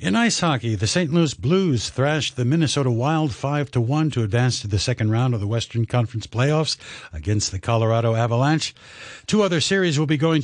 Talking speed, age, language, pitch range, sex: 190 wpm, 60-79, English, 105-150 Hz, male